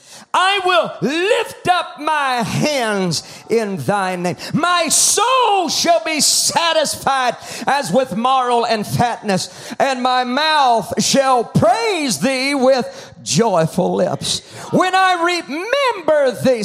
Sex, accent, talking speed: male, American, 115 wpm